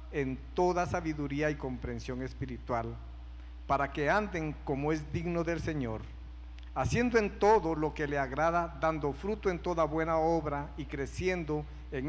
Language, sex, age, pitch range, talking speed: Spanish, male, 50-69, 110-170 Hz, 150 wpm